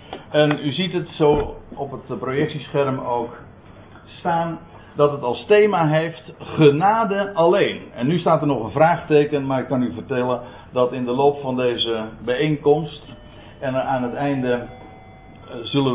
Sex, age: male, 60-79